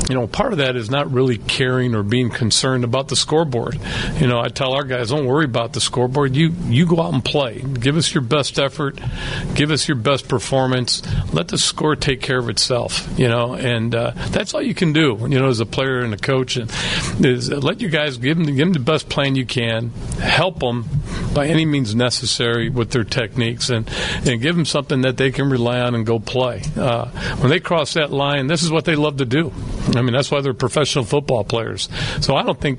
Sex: male